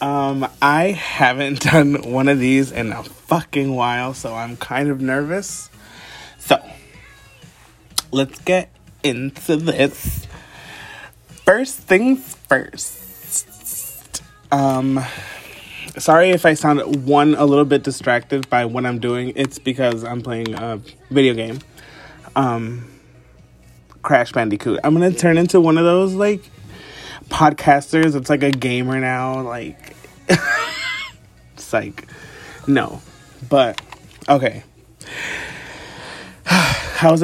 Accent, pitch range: American, 125-155 Hz